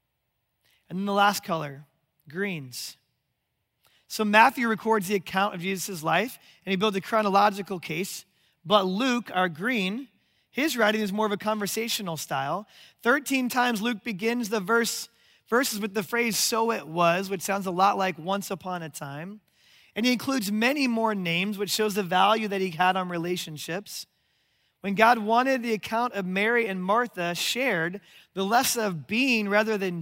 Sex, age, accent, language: male, 30-49, American, English